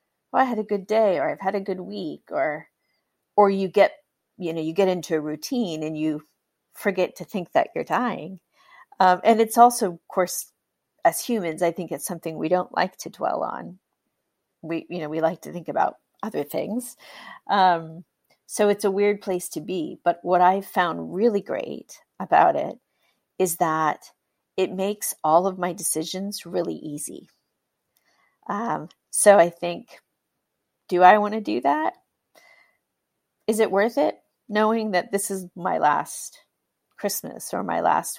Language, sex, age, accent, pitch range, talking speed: English, female, 40-59, American, 175-220 Hz, 170 wpm